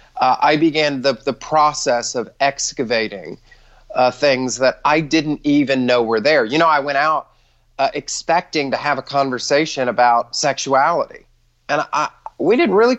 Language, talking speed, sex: English, 160 wpm, male